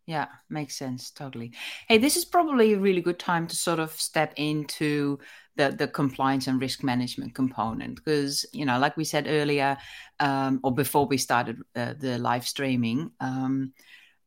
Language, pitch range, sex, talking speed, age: English, 135-165 Hz, female, 170 wpm, 30-49